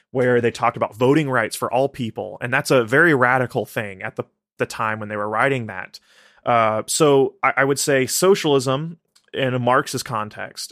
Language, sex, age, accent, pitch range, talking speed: English, male, 20-39, American, 115-140 Hz, 195 wpm